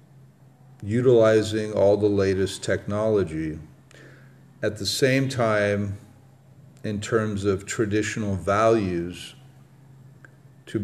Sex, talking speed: male, 85 wpm